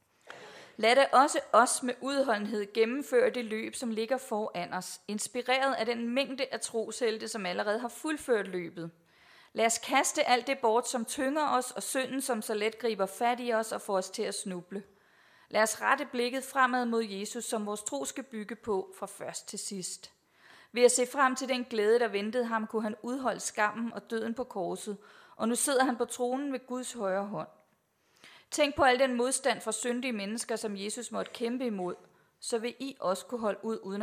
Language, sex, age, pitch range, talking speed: Danish, female, 30-49, 200-250 Hz, 200 wpm